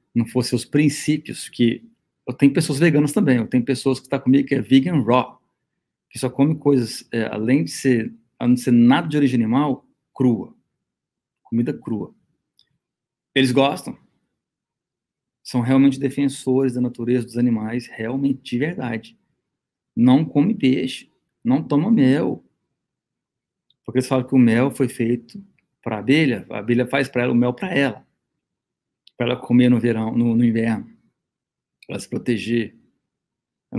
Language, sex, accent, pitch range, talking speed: Portuguese, male, Brazilian, 115-135 Hz, 155 wpm